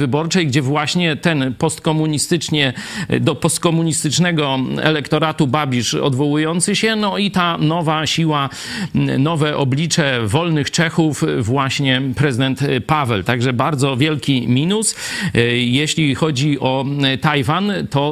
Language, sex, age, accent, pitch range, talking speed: Polish, male, 50-69, native, 125-155 Hz, 105 wpm